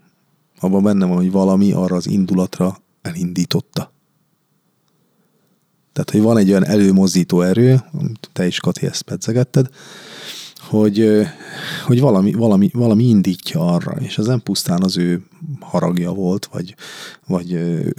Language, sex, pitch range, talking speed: Hungarian, male, 95-155 Hz, 130 wpm